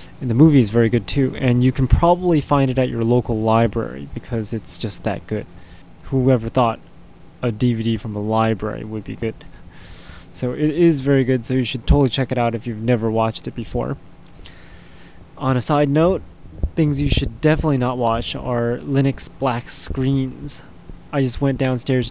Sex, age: male, 20-39